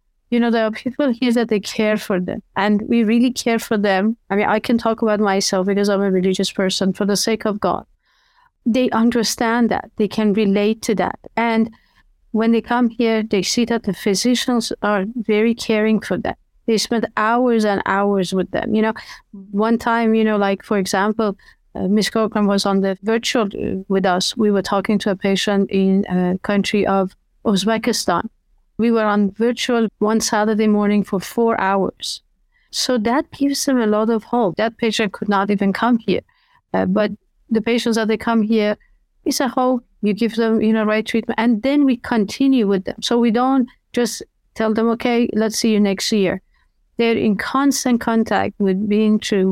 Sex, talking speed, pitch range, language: female, 195 wpm, 200-230 Hz, English